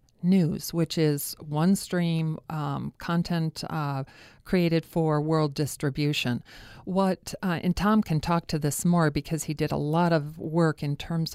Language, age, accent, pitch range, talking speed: English, 50-69, American, 150-175 Hz, 160 wpm